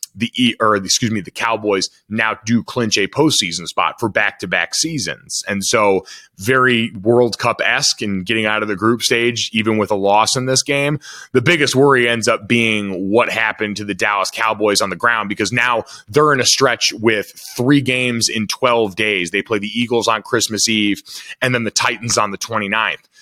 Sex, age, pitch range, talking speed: male, 30-49, 105-130 Hz, 195 wpm